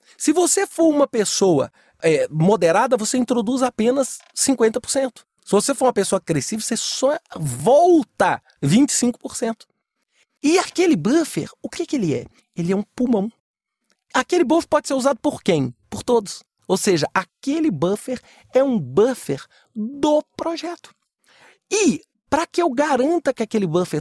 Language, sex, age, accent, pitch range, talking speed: English, male, 40-59, Brazilian, 190-275 Hz, 145 wpm